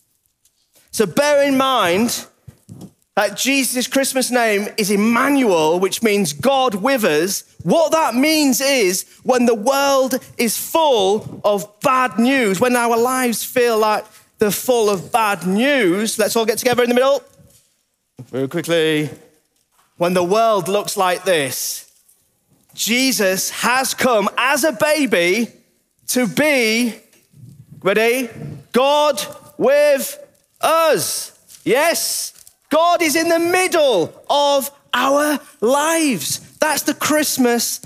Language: English